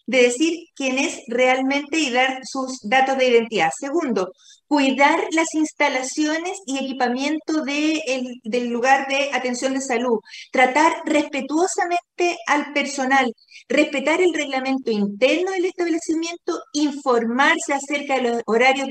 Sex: female